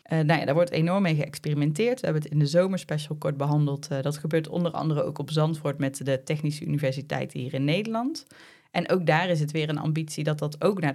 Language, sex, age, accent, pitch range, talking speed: Dutch, female, 20-39, Dutch, 140-160 Hz, 235 wpm